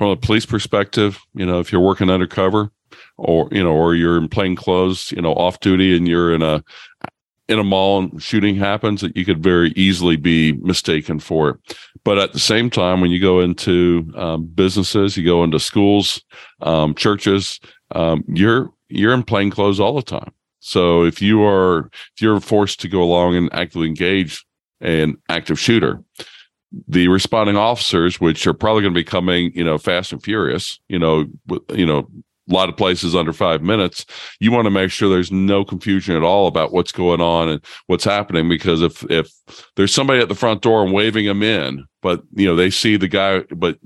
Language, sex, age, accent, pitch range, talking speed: English, male, 50-69, American, 85-100 Hz, 200 wpm